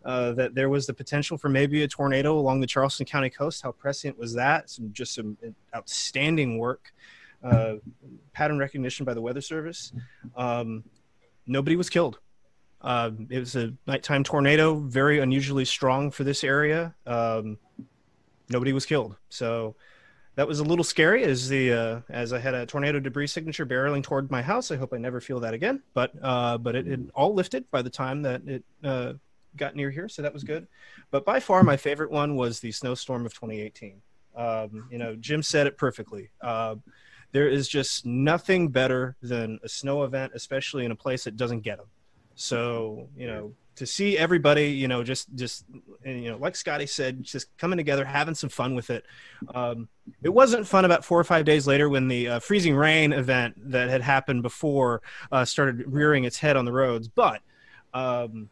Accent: American